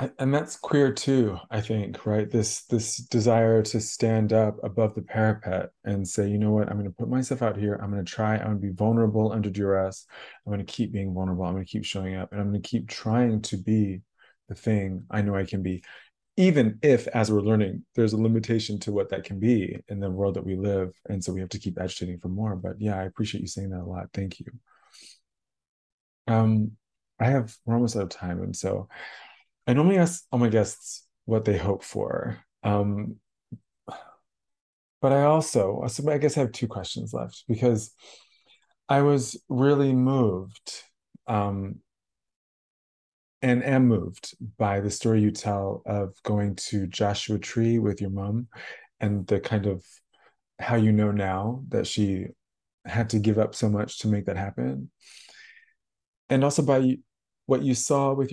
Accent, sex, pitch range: American, male, 100-115 Hz